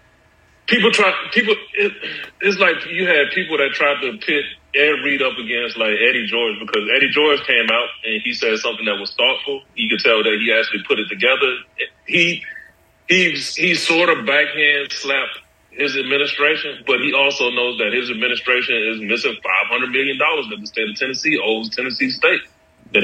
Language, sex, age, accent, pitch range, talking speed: English, male, 30-49, American, 115-150 Hz, 180 wpm